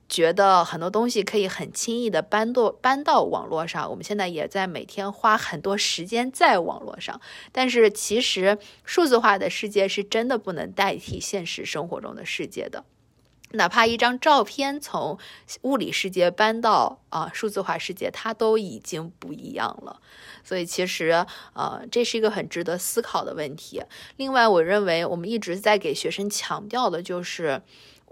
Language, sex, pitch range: Chinese, female, 180-230 Hz